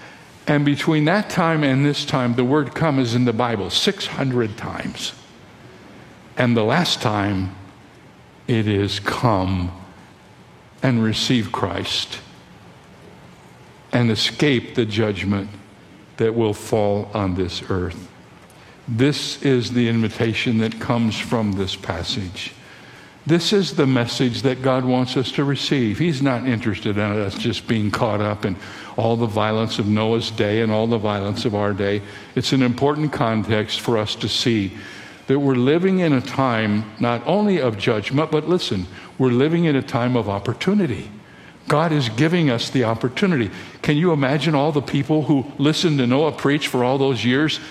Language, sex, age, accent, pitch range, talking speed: English, male, 60-79, American, 110-145 Hz, 160 wpm